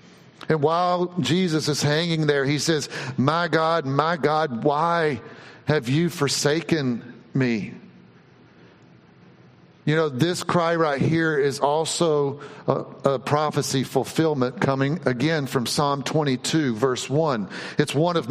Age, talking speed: 50-69, 130 wpm